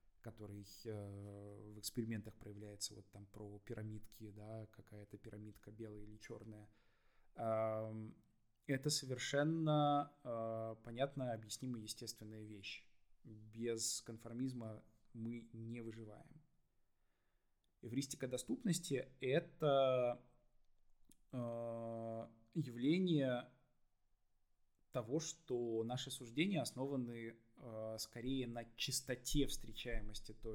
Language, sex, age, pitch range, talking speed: Russian, male, 20-39, 105-125 Hz, 80 wpm